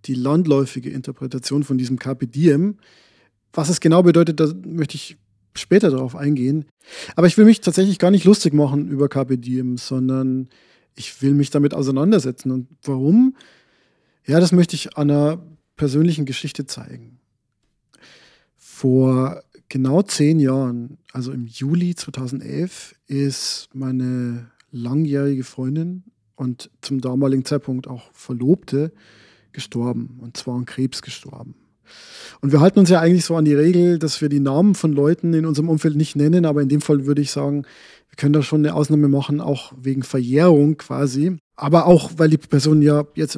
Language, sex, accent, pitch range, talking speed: German, male, German, 130-155 Hz, 160 wpm